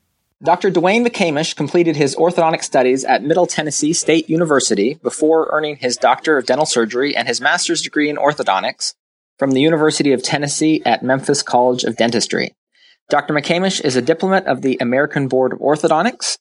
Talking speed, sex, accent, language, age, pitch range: 170 wpm, male, American, English, 30-49, 130-160 Hz